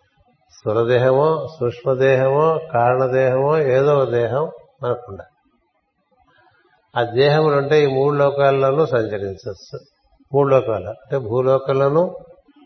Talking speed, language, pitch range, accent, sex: 80 wpm, Telugu, 120-140 Hz, native, male